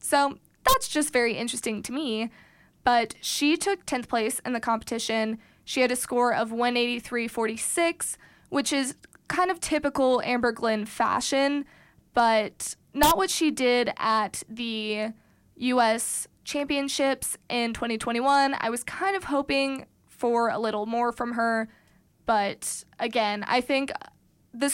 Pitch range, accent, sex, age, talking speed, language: 225-270 Hz, American, female, 20-39, 135 wpm, English